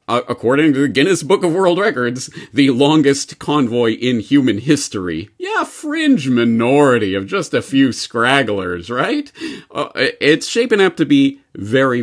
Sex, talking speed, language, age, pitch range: male, 150 wpm, English, 40-59, 100-145 Hz